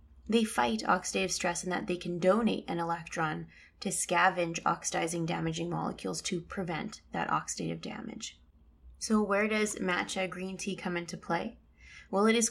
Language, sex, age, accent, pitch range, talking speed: English, female, 20-39, American, 165-195 Hz, 160 wpm